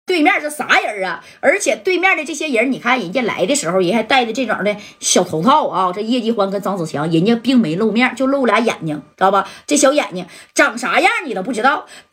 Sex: female